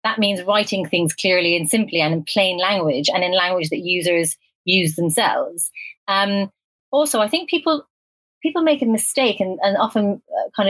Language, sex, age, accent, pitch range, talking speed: English, female, 30-49, British, 185-235 Hz, 175 wpm